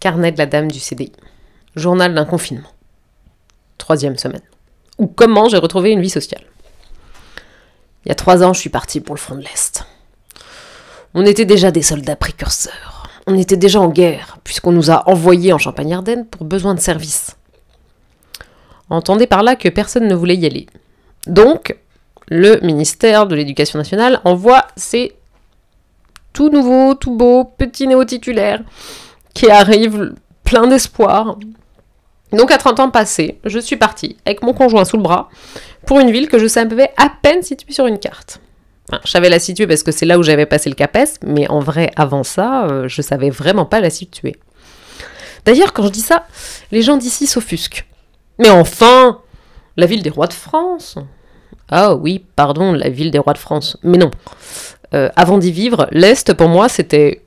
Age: 30-49